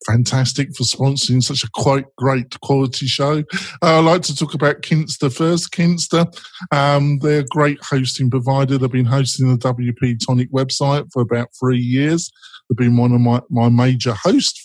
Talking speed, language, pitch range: 175 wpm, English, 125-145 Hz